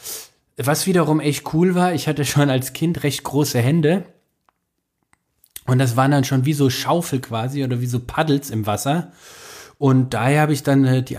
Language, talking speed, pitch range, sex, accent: German, 180 wpm, 125-155 Hz, male, German